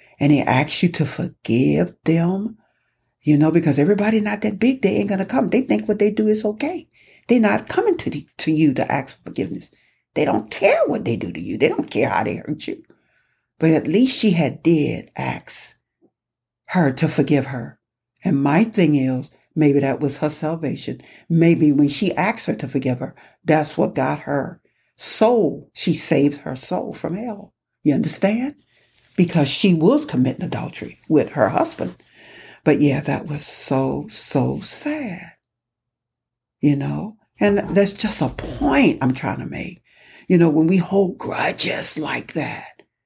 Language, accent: English, American